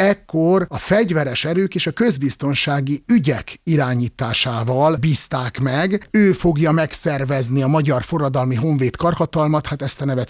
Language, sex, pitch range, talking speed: Hungarian, male, 125-160 Hz, 135 wpm